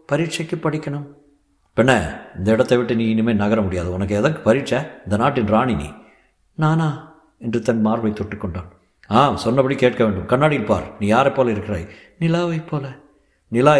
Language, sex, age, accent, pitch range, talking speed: Tamil, male, 60-79, native, 100-145 Hz, 150 wpm